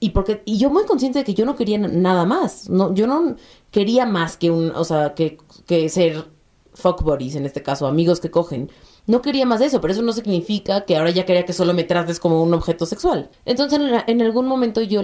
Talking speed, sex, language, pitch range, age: 235 wpm, female, Spanish, 170-230 Hz, 30-49